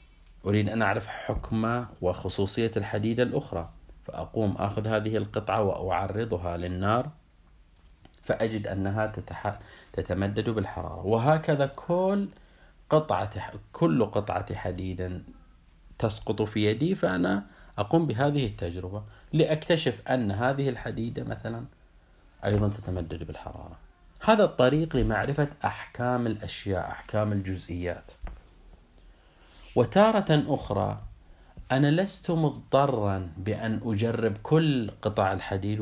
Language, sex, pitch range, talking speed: Arabic, male, 90-120 Hz, 90 wpm